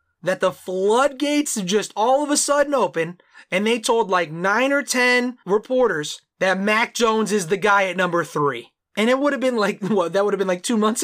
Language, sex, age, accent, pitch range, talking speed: English, male, 20-39, American, 170-240 Hz, 215 wpm